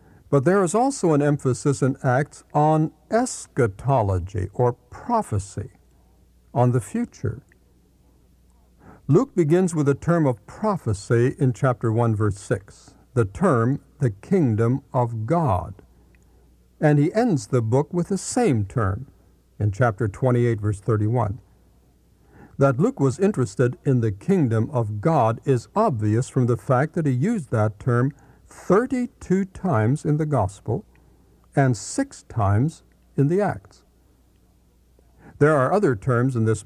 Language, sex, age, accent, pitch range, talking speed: English, male, 60-79, American, 105-150 Hz, 135 wpm